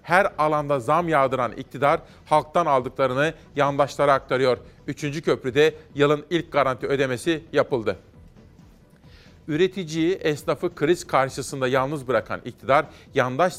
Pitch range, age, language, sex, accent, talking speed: 135-170 Hz, 40-59, Turkish, male, native, 105 wpm